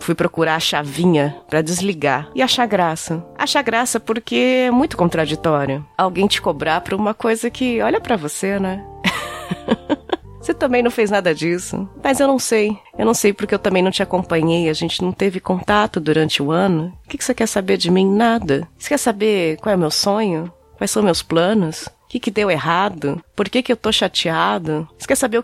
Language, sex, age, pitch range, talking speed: Portuguese, female, 30-49, 150-205 Hz, 200 wpm